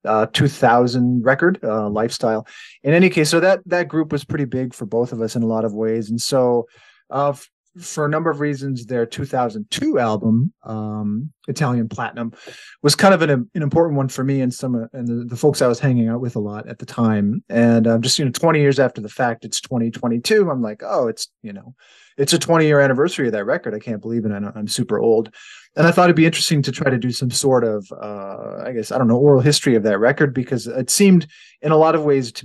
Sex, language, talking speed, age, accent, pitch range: male, English, 245 wpm, 30-49, American, 115-145 Hz